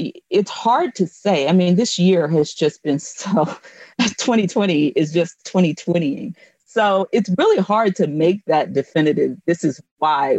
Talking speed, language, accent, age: 155 wpm, English, American, 40-59